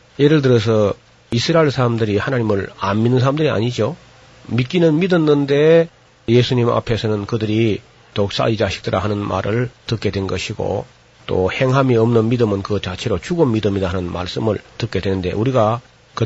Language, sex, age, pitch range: Korean, male, 40-59, 100-130 Hz